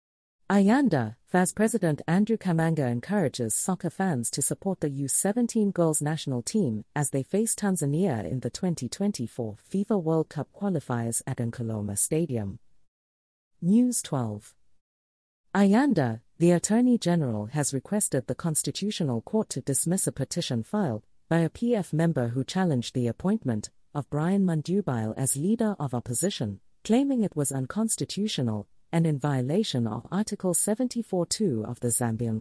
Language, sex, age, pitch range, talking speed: English, female, 40-59, 120-190 Hz, 135 wpm